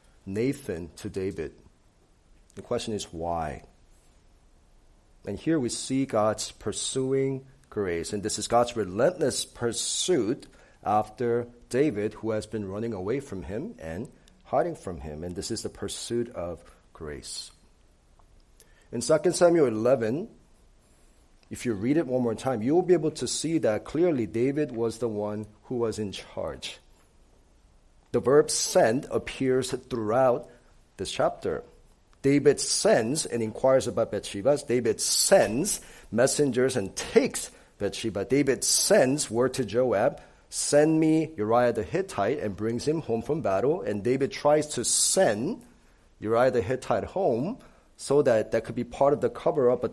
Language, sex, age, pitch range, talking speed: English, male, 40-59, 105-130 Hz, 145 wpm